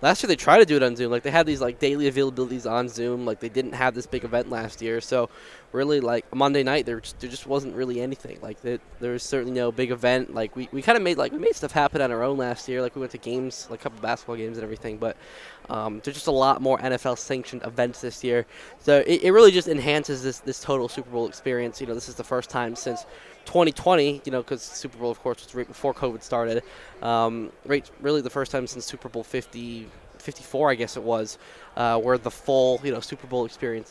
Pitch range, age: 120-140 Hz, 10-29